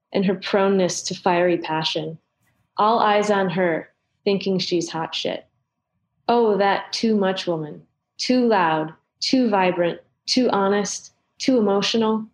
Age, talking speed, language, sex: 30-49, 130 wpm, English, female